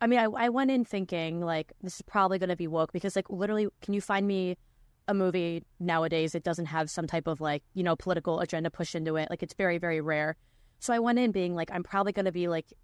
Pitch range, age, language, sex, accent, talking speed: 165-200 Hz, 20-39, English, female, American, 255 wpm